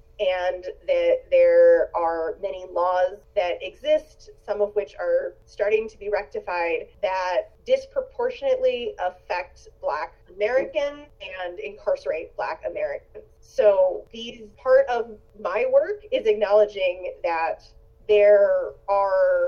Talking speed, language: 110 wpm, English